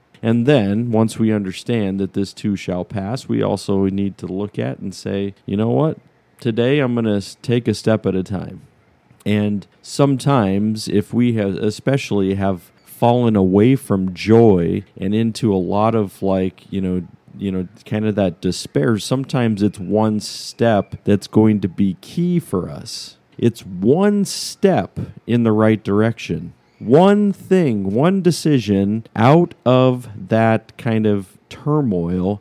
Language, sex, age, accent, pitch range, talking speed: English, male, 40-59, American, 95-115 Hz, 155 wpm